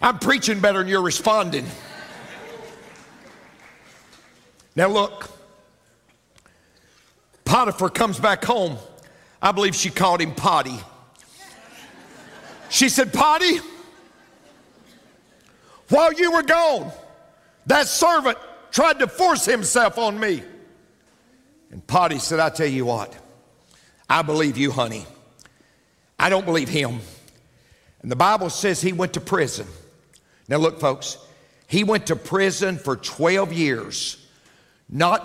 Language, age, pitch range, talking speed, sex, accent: English, 60-79, 135-205 Hz, 115 wpm, male, American